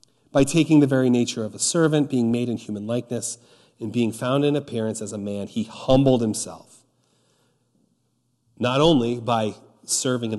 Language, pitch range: English, 115-145 Hz